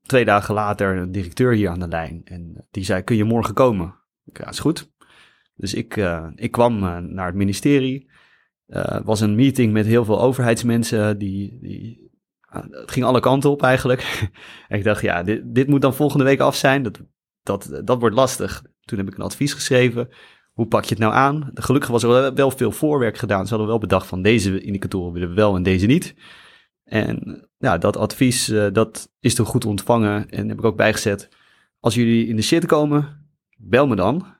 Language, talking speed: Dutch, 210 wpm